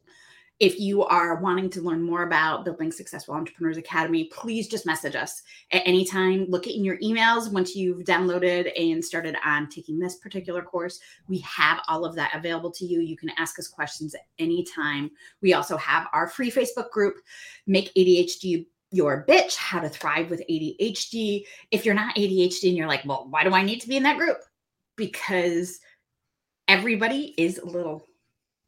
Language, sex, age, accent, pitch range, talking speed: English, female, 30-49, American, 170-200 Hz, 180 wpm